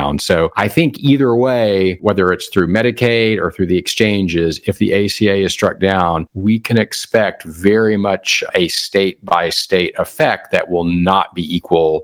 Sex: male